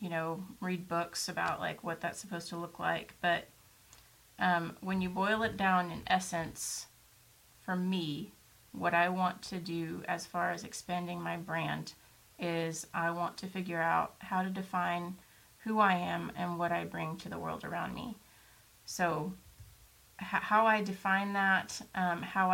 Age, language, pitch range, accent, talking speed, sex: 30-49, English, 170-190 Hz, American, 170 wpm, female